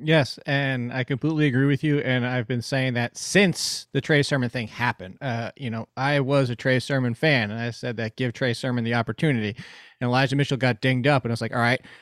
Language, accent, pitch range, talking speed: English, American, 130-170 Hz, 240 wpm